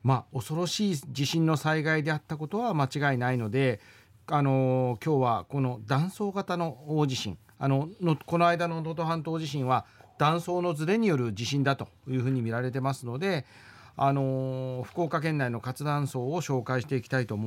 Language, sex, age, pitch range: Japanese, male, 40-59, 125-180 Hz